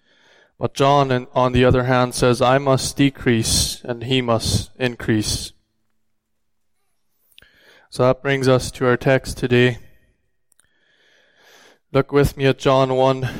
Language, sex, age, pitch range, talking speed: English, male, 20-39, 120-135 Hz, 125 wpm